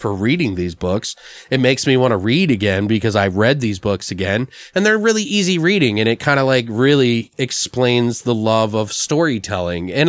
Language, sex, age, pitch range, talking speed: English, male, 30-49, 110-140 Hz, 200 wpm